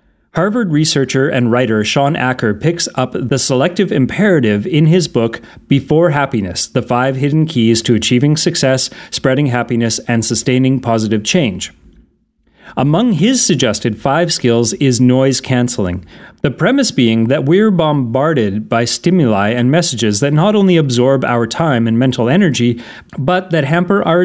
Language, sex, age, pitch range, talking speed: English, male, 30-49, 120-160 Hz, 145 wpm